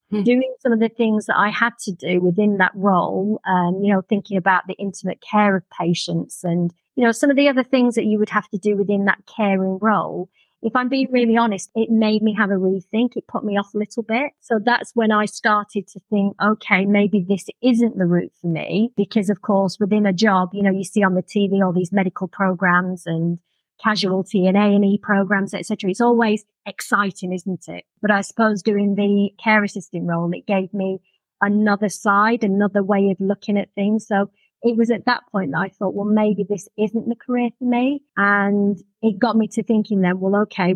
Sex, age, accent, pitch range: female, 30-49, British, 190-220 Hz